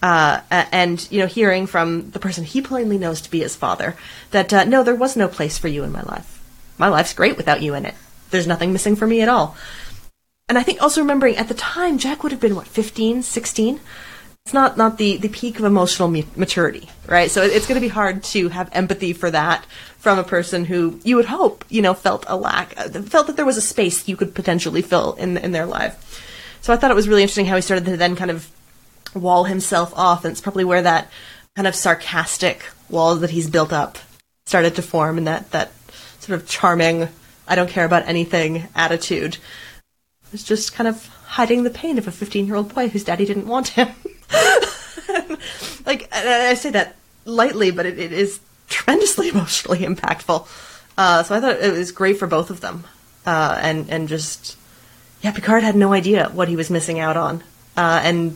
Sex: female